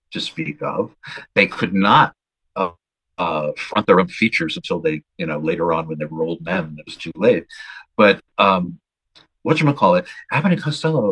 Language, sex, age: English, male, 50-69